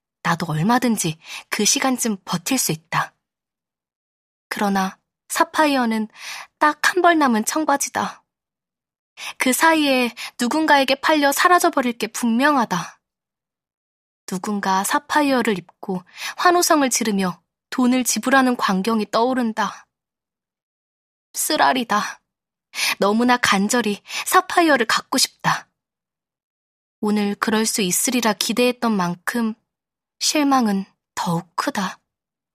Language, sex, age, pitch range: Korean, female, 20-39, 210-295 Hz